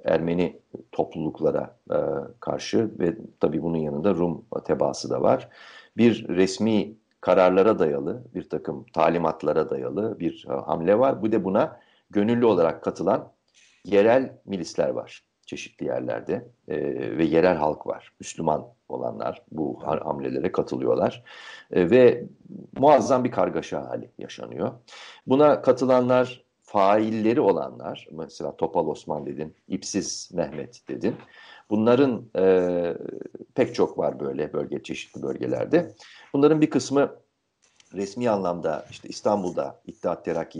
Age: 50-69